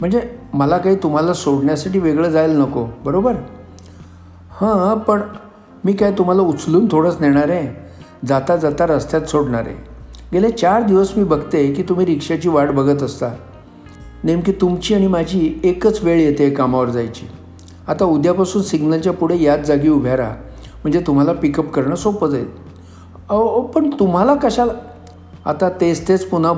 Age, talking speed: 50-69, 145 wpm